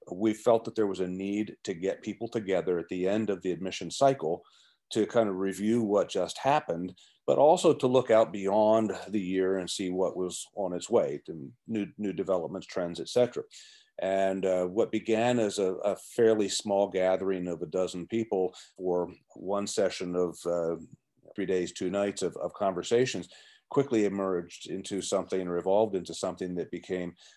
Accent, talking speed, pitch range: American, 180 wpm, 90-110 Hz